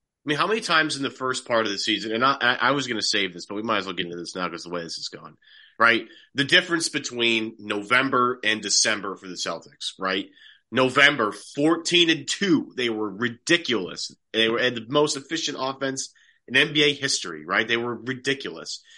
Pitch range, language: 105-145 Hz, English